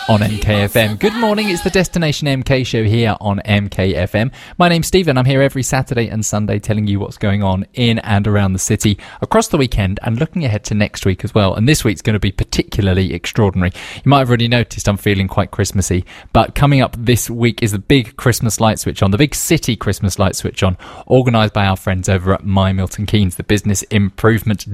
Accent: British